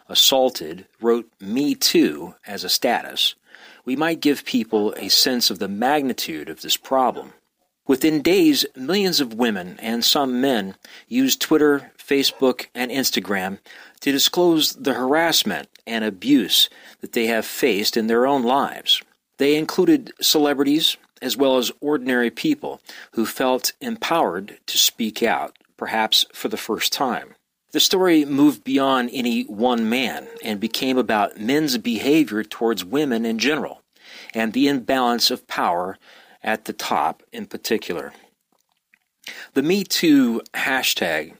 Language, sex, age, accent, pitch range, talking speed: English, male, 40-59, American, 115-175 Hz, 135 wpm